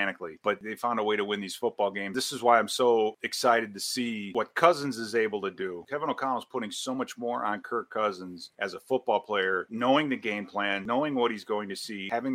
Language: English